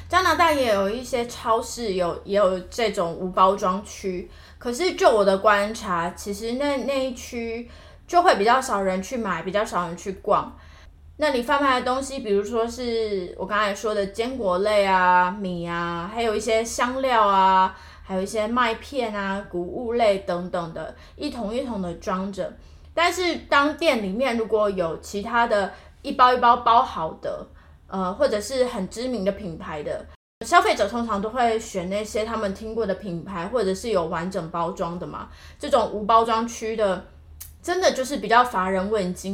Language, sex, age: Chinese, female, 20-39